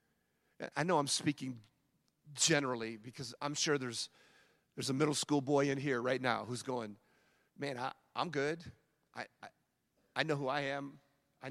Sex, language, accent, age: male, English, American, 40-59